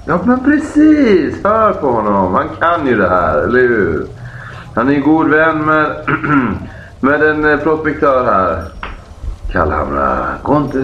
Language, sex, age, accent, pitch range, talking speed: Swedish, male, 30-49, native, 85-130 Hz, 140 wpm